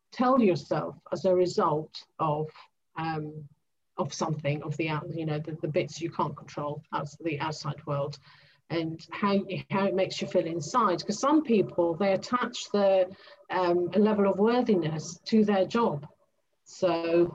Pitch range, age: 165-195 Hz, 50-69